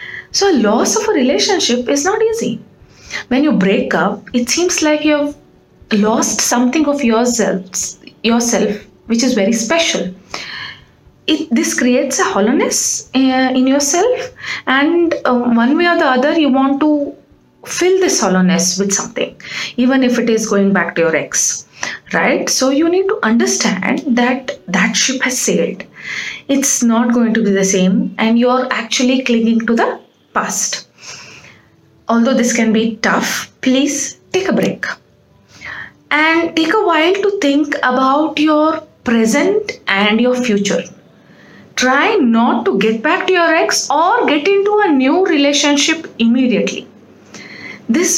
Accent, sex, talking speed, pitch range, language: Indian, female, 150 wpm, 225-310 Hz, English